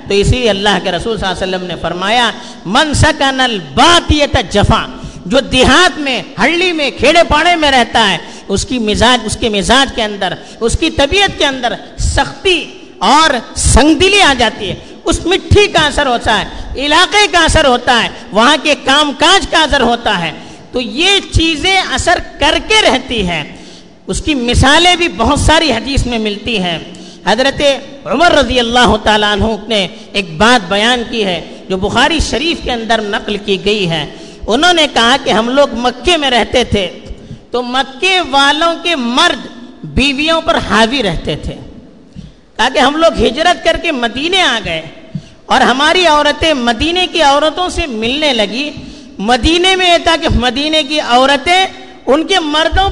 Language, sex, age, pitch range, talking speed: Urdu, female, 50-69, 230-325 Hz, 170 wpm